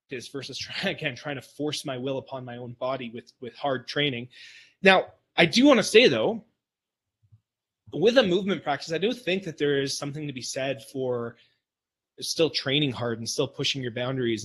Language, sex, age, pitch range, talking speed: English, male, 20-39, 125-150 Hz, 190 wpm